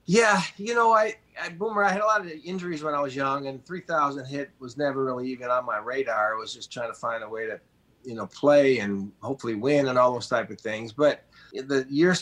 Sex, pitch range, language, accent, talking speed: male, 125-160 Hz, English, American, 245 wpm